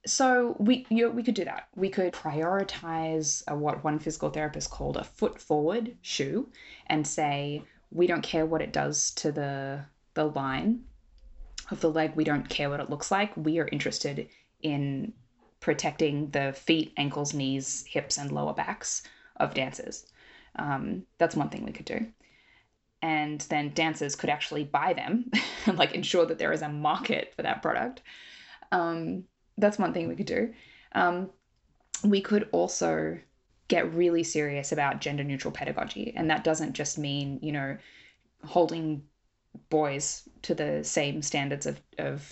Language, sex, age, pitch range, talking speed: English, female, 10-29, 140-170 Hz, 165 wpm